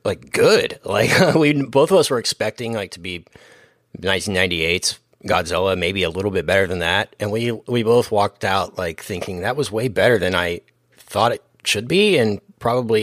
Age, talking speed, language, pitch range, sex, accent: 30-49, 190 wpm, English, 95-135 Hz, male, American